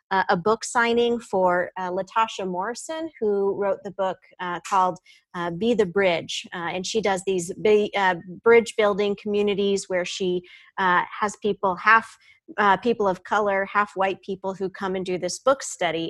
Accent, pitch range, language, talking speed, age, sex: American, 190-230 Hz, English, 170 wpm, 40-59, female